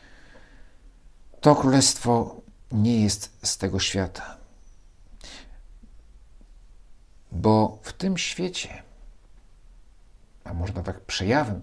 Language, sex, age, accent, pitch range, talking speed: Polish, male, 50-69, native, 95-115 Hz, 75 wpm